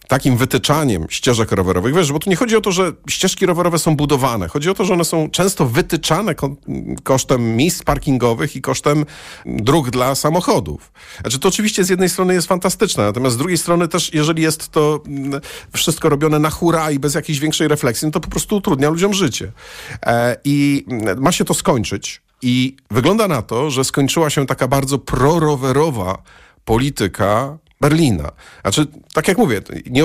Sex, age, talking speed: male, 40-59, 170 wpm